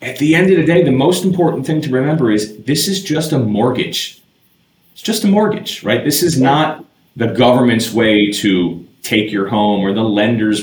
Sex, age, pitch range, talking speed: male, 30-49, 105-135 Hz, 205 wpm